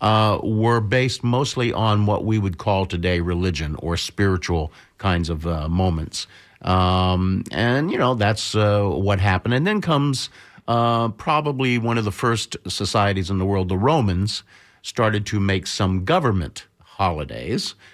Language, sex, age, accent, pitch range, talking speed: English, male, 50-69, American, 90-110 Hz, 155 wpm